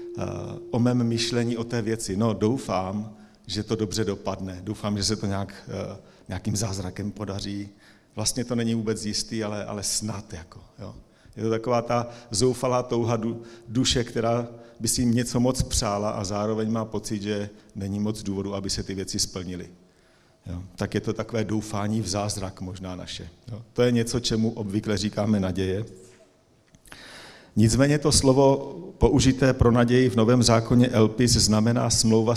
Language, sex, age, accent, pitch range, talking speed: Czech, male, 40-59, native, 100-120 Hz, 160 wpm